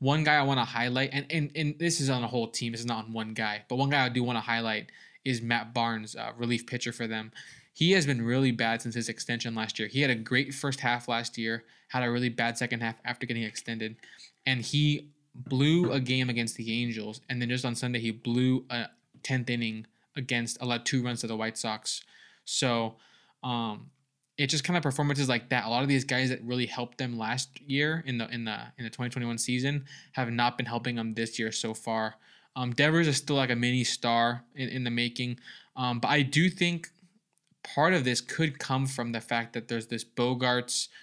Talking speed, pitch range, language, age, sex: 230 wpm, 115-130 Hz, English, 20-39, male